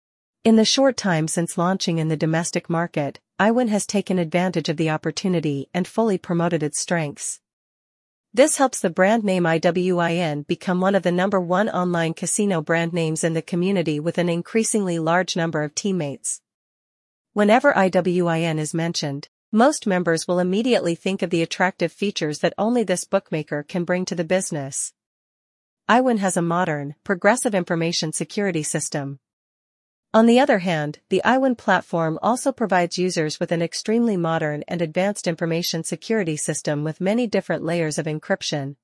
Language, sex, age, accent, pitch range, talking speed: English, female, 40-59, American, 160-200 Hz, 160 wpm